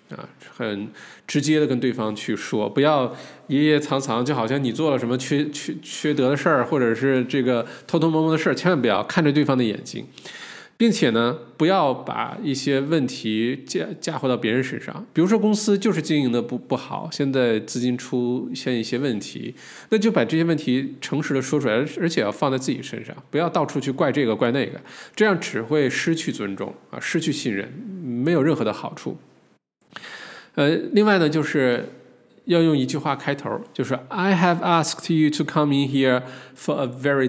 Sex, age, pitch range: male, 20-39, 120-150 Hz